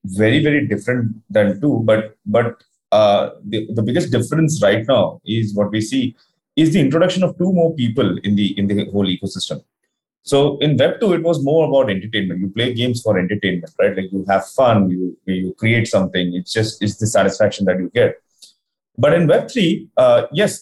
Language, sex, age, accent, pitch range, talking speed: English, male, 30-49, Indian, 110-165 Hz, 200 wpm